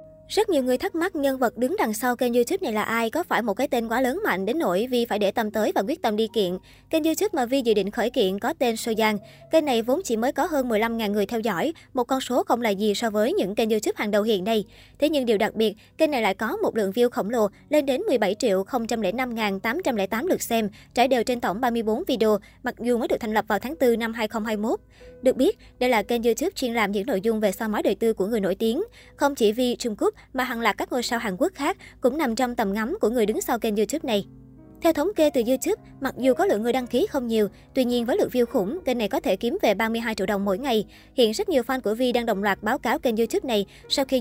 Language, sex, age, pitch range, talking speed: Vietnamese, male, 20-39, 215-265 Hz, 290 wpm